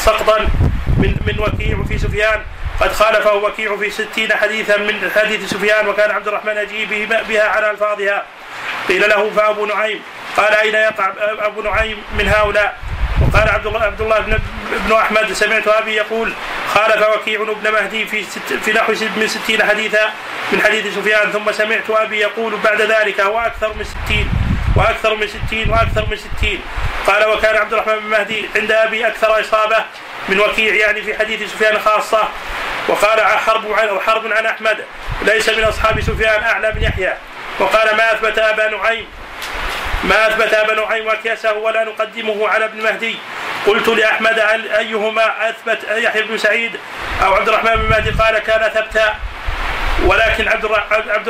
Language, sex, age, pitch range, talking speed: Arabic, male, 30-49, 210-220 Hz, 155 wpm